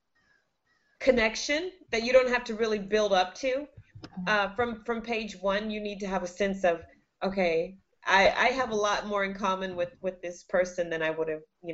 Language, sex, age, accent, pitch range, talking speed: English, female, 30-49, American, 175-225 Hz, 205 wpm